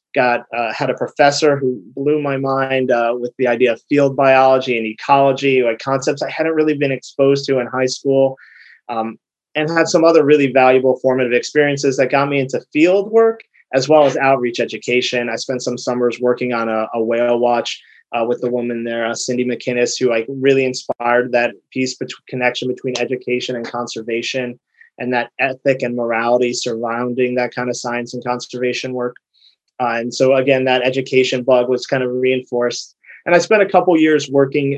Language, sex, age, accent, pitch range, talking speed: English, male, 20-39, American, 125-140 Hz, 190 wpm